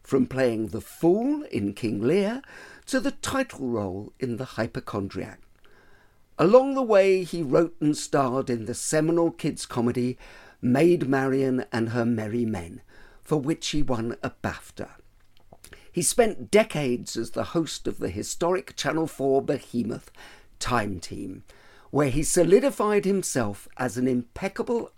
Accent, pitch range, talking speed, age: British, 120-185 Hz, 140 wpm, 50-69